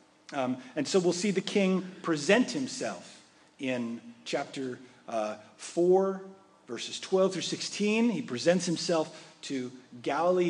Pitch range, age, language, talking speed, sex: 145-200 Hz, 40-59, English, 125 wpm, male